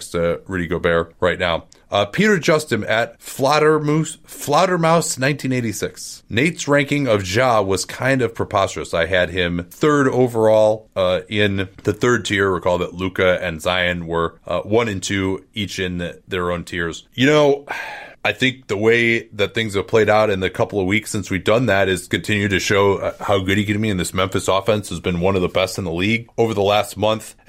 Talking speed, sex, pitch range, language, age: 200 wpm, male, 95-120 Hz, English, 30-49